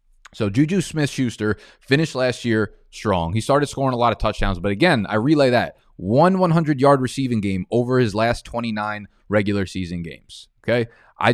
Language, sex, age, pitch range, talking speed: English, male, 20-39, 100-130 Hz, 170 wpm